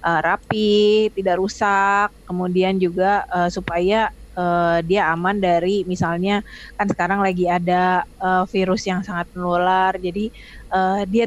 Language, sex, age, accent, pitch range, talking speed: Indonesian, female, 20-39, native, 175-195 Hz, 135 wpm